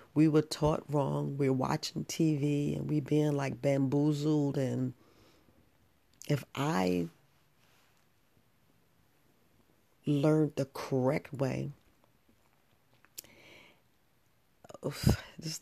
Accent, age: American, 40-59